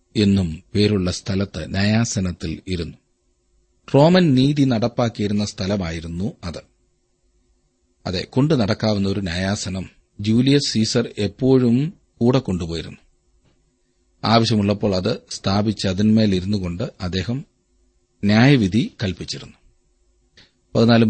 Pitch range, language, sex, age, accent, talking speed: 95-125 Hz, Malayalam, male, 40-59, native, 75 wpm